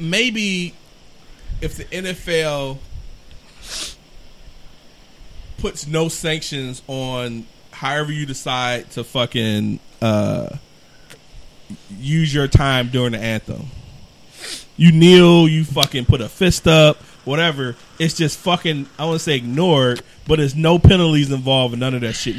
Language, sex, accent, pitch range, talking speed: English, male, American, 125-160 Hz, 125 wpm